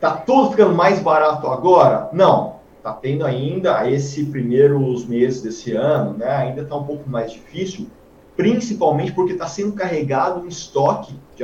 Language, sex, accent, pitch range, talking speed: Portuguese, male, Brazilian, 125-160 Hz, 155 wpm